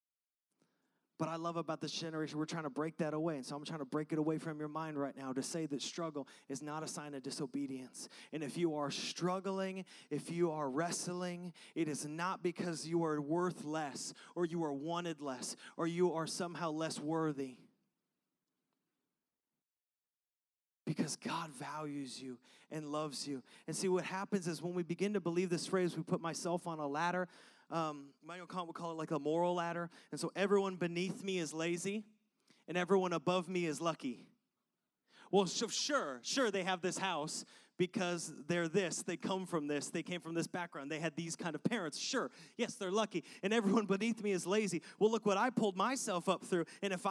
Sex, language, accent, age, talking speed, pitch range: male, English, American, 30-49, 200 wpm, 155-190 Hz